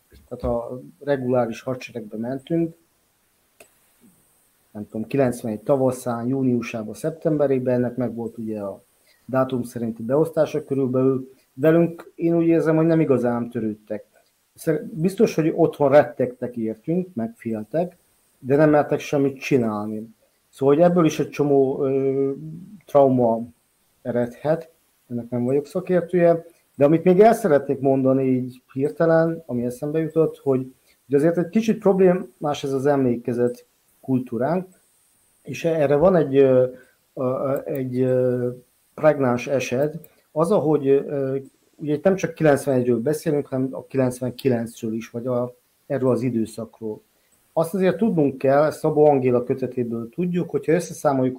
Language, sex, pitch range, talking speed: Hungarian, male, 120-155 Hz, 125 wpm